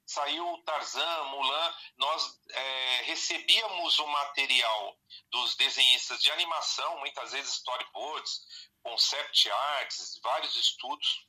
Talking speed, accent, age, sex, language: 100 wpm, Brazilian, 40-59, male, Portuguese